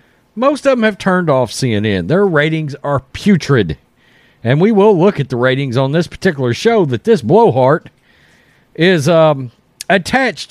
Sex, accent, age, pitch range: male, American, 40-59, 130-180 Hz